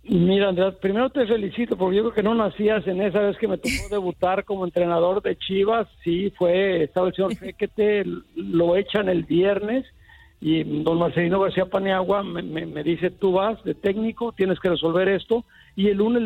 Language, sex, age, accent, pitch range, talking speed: Spanish, male, 60-79, Mexican, 175-205 Hz, 190 wpm